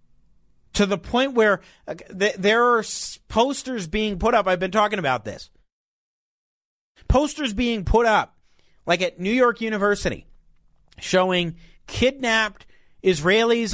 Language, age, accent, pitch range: English, 40-59, American, 165-230 Hz